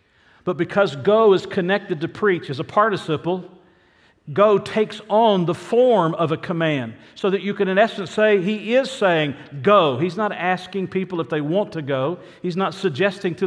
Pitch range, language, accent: 155-200 Hz, English, American